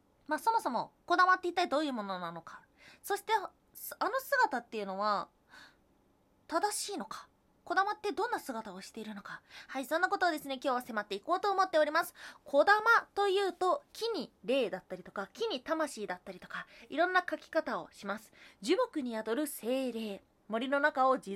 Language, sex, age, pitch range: Japanese, female, 20-39, 220-365 Hz